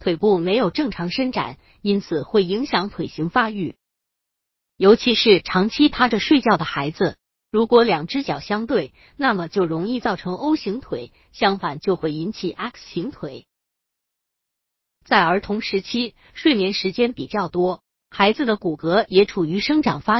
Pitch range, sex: 170-235 Hz, female